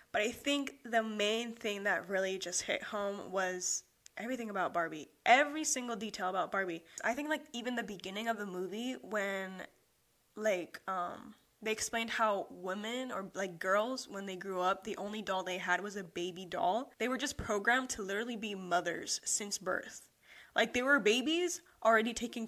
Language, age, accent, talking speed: English, 10-29, American, 180 wpm